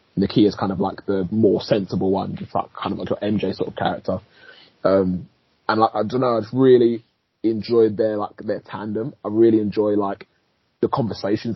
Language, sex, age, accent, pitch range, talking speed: English, male, 20-39, British, 95-110 Hz, 200 wpm